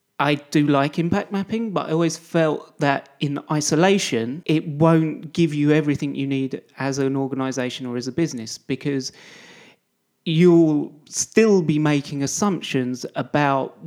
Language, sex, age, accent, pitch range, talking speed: English, male, 30-49, British, 140-165 Hz, 145 wpm